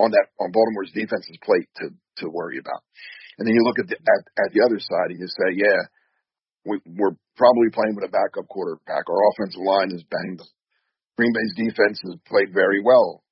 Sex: male